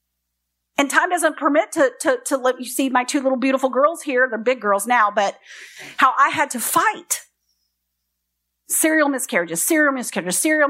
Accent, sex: American, female